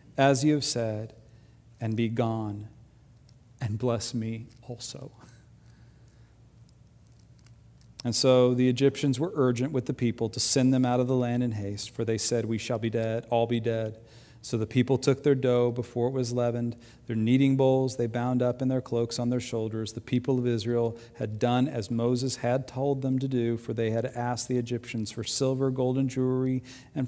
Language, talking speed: English, 190 wpm